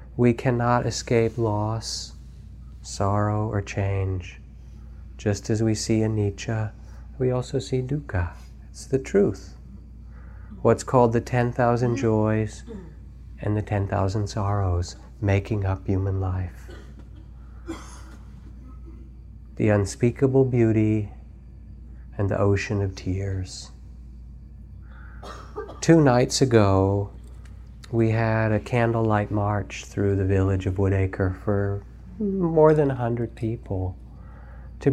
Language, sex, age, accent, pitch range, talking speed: English, male, 40-59, American, 95-115 Hz, 105 wpm